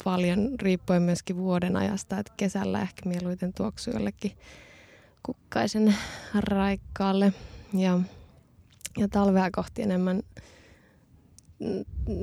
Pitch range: 185-210 Hz